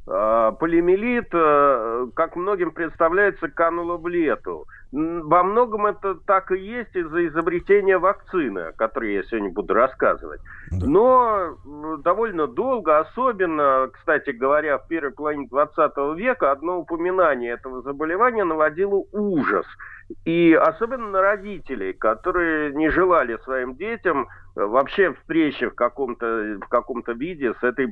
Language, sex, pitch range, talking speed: Russian, male, 150-215 Hz, 125 wpm